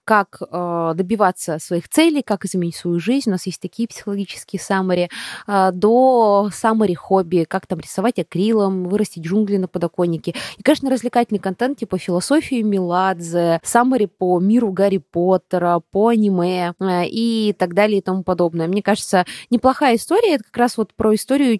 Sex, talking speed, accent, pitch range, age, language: female, 150 wpm, native, 185-235 Hz, 20-39, Russian